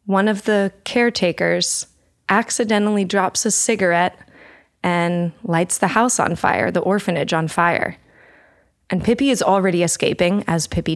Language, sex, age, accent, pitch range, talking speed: English, female, 20-39, American, 165-200 Hz, 135 wpm